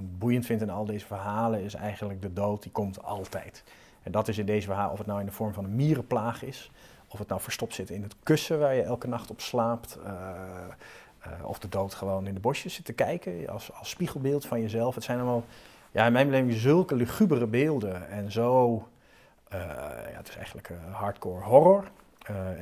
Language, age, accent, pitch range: Dutch, 40-59, Dutch, 100-120 Hz